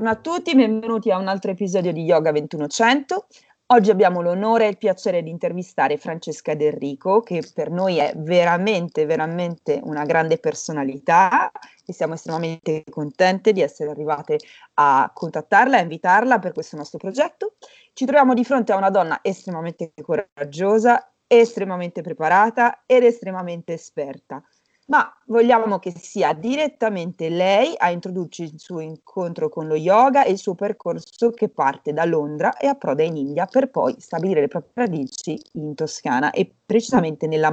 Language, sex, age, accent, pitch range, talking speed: Italian, female, 30-49, native, 160-225 Hz, 155 wpm